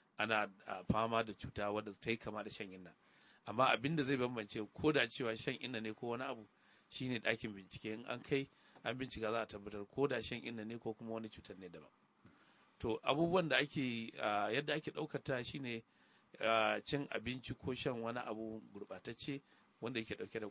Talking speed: 190 wpm